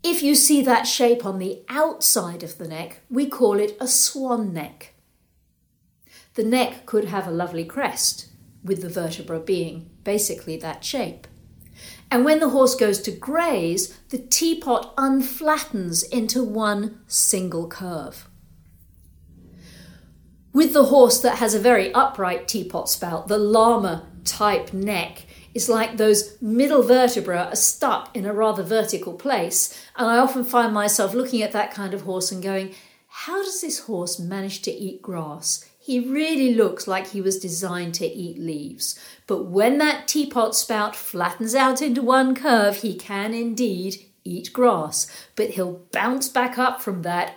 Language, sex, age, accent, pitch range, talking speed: English, female, 50-69, British, 180-250 Hz, 155 wpm